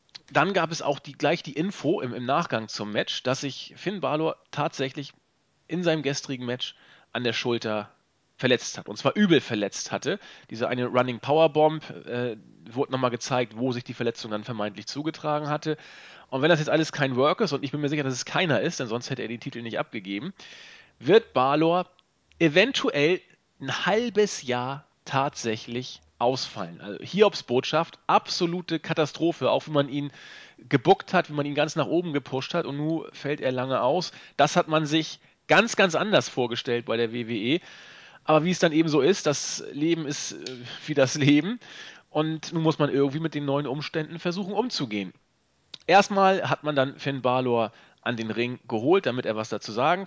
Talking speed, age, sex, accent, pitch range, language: 190 wpm, 40-59, male, German, 125-165 Hz, German